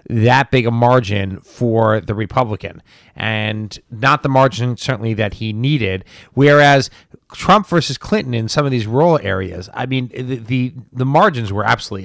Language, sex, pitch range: English, male, 115-140 Hz